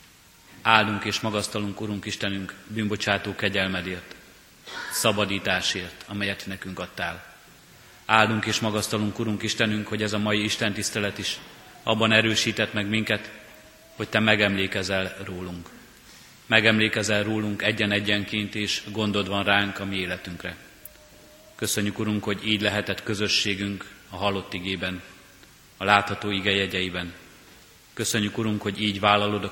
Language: Hungarian